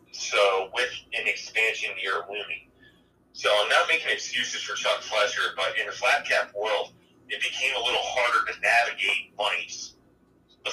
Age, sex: 30-49, male